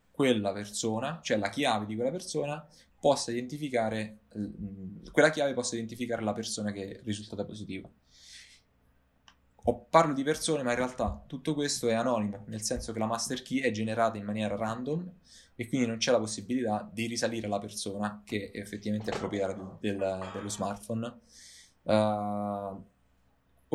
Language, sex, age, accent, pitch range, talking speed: Italian, male, 20-39, native, 105-125 Hz, 160 wpm